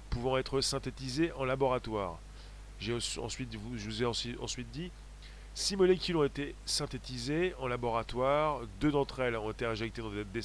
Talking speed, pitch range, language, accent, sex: 155 wpm, 120-150 Hz, French, French, male